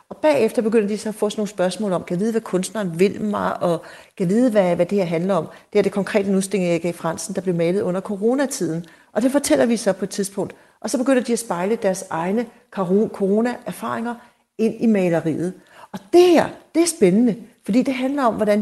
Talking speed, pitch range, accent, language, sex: 220 wpm, 180-225 Hz, native, Danish, female